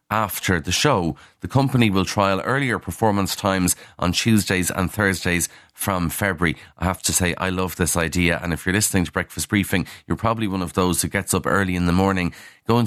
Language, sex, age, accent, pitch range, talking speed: English, male, 30-49, Irish, 90-110 Hz, 205 wpm